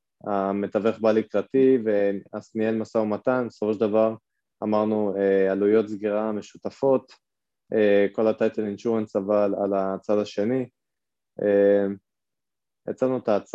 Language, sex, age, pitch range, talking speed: Hebrew, male, 20-39, 100-120 Hz, 100 wpm